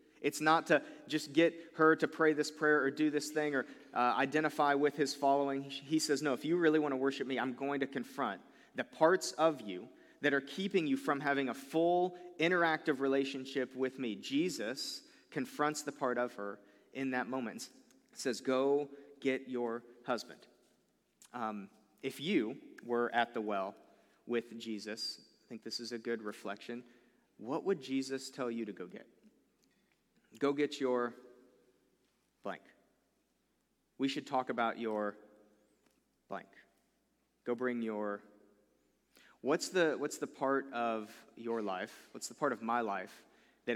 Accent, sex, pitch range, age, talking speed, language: American, male, 115-145 Hz, 40-59, 160 wpm, English